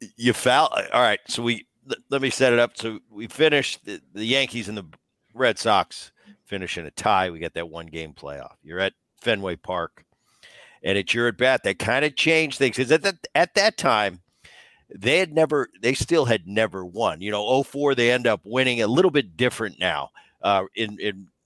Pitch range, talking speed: 100-140 Hz, 200 wpm